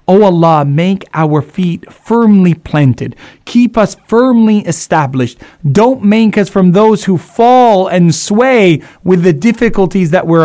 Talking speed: 145 wpm